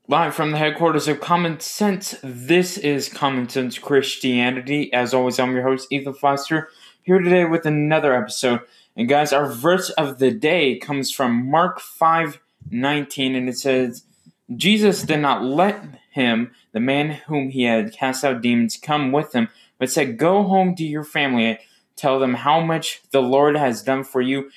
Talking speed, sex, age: 180 wpm, male, 20-39